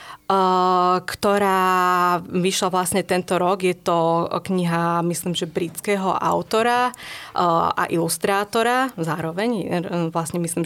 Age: 20-39